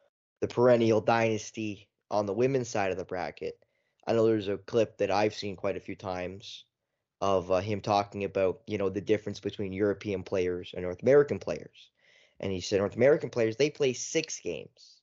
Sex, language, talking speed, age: male, English, 190 wpm, 10-29